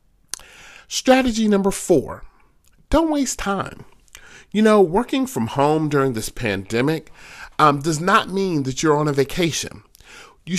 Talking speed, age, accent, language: 135 wpm, 40-59, American, English